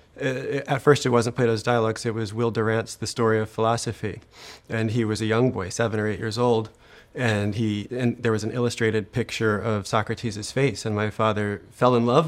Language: English